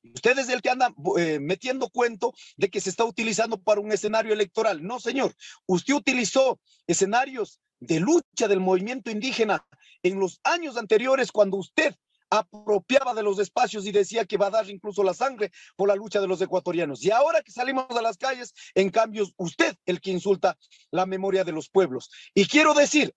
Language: Spanish